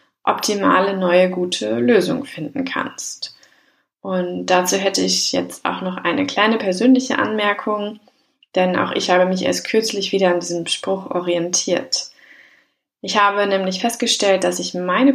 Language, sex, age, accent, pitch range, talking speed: German, female, 20-39, German, 180-225 Hz, 145 wpm